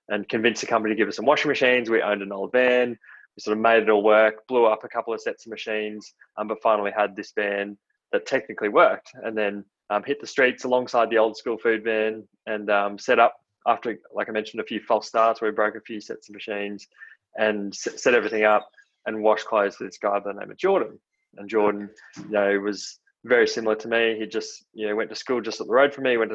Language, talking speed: English, 250 wpm